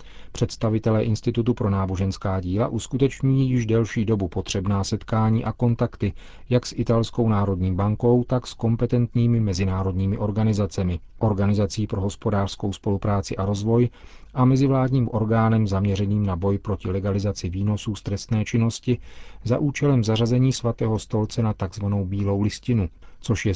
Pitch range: 100-120 Hz